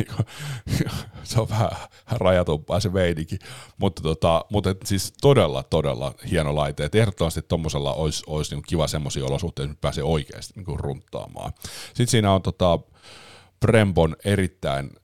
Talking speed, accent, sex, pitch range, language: 130 wpm, native, male, 75-95 Hz, Finnish